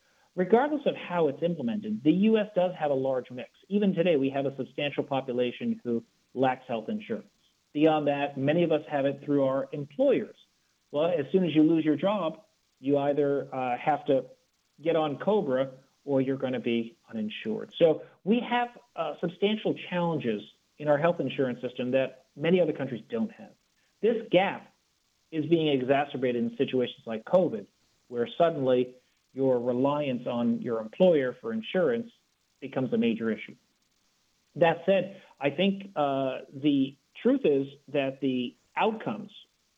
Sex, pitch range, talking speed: male, 130-190 Hz, 160 wpm